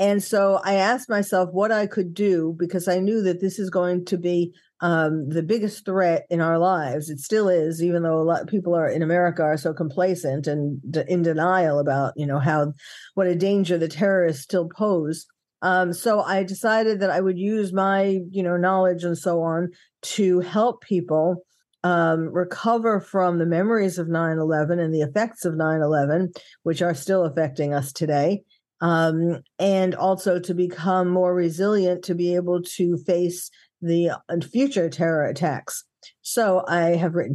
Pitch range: 165-195 Hz